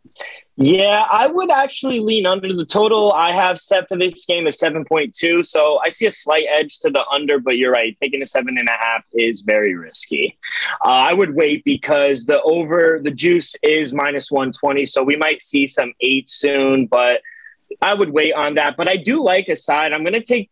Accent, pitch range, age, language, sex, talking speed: American, 140-185 Hz, 20-39, English, male, 200 wpm